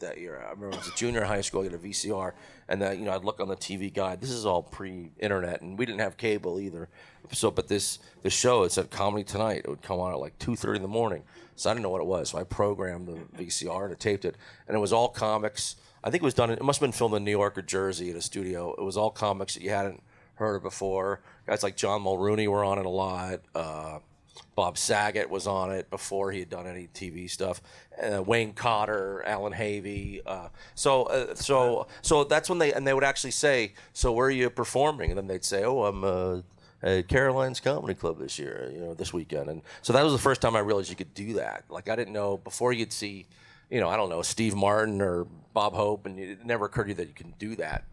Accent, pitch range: American, 95-110 Hz